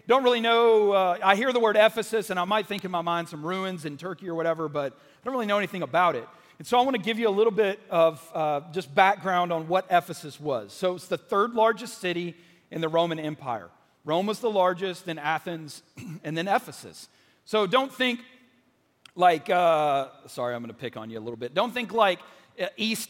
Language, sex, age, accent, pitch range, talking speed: English, male, 40-59, American, 165-215 Hz, 225 wpm